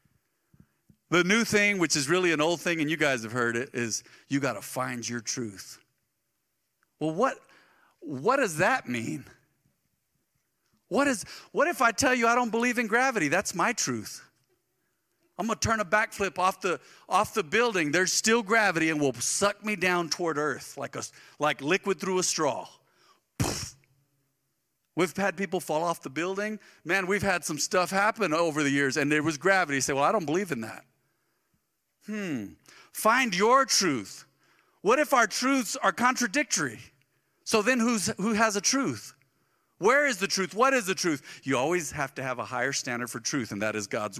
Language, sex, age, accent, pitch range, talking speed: English, male, 50-69, American, 150-215 Hz, 185 wpm